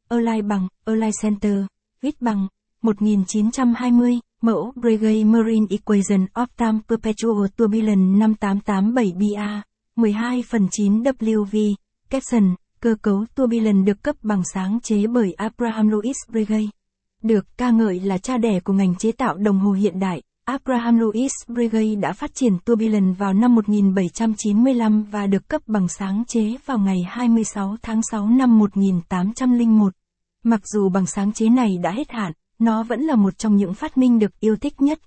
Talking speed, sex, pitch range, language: 190 wpm, female, 200-230 Hz, Vietnamese